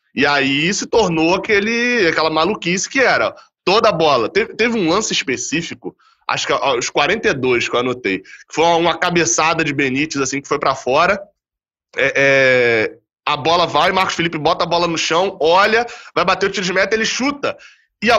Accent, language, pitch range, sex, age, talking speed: Brazilian, Portuguese, 145-210 Hz, male, 20-39, 185 wpm